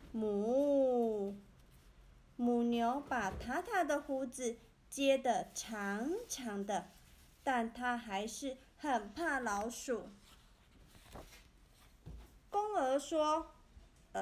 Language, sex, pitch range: Chinese, female, 230-285 Hz